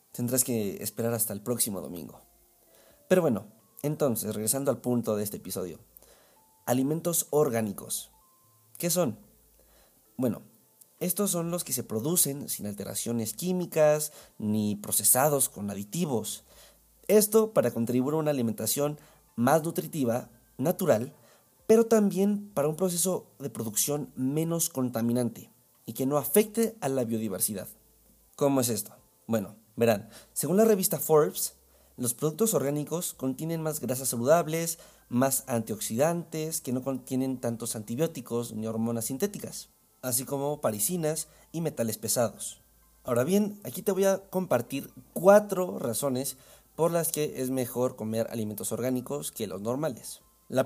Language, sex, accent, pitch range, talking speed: Spanish, male, Mexican, 115-165 Hz, 135 wpm